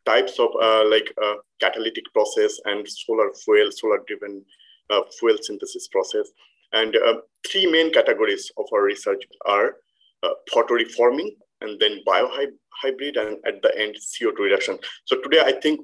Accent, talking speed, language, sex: Indian, 155 wpm, English, male